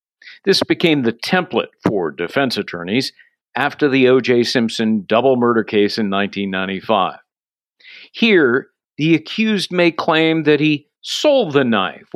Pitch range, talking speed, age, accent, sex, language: 115-170 Hz, 130 wpm, 50-69, American, male, English